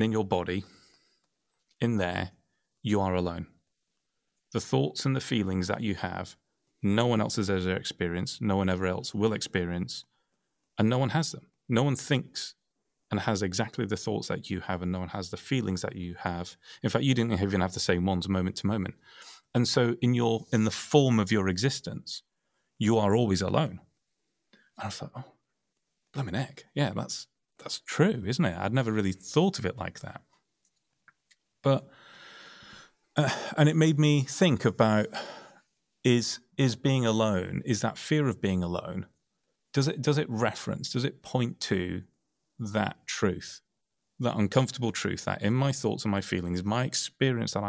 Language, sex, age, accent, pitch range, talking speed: English, male, 30-49, British, 95-125 Hz, 180 wpm